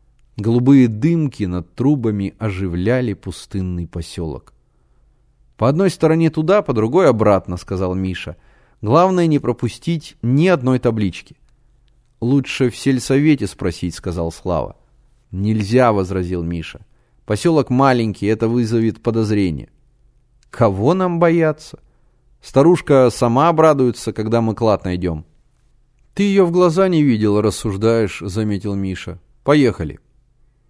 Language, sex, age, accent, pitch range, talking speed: Russian, male, 30-49, native, 100-130 Hz, 110 wpm